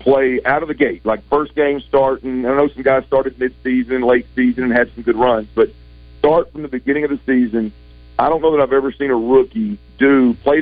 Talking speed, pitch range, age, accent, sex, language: 235 wpm, 115-140 Hz, 50-69, American, male, English